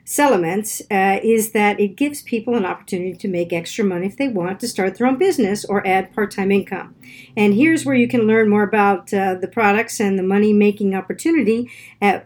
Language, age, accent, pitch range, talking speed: English, 50-69, American, 195-240 Hz, 200 wpm